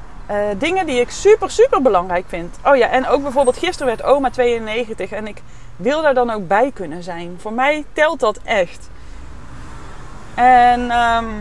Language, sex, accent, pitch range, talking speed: Dutch, female, Dutch, 205-280 Hz, 170 wpm